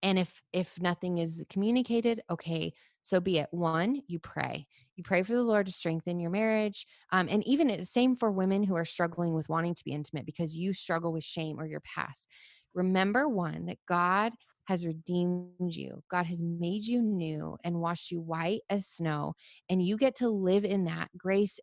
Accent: American